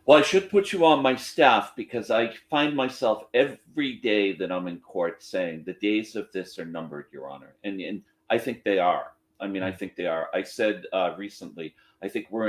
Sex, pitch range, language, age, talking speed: male, 95-115 Hz, English, 40-59, 220 wpm